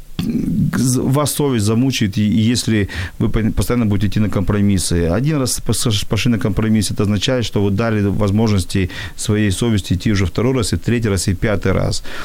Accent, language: native, Ukrainian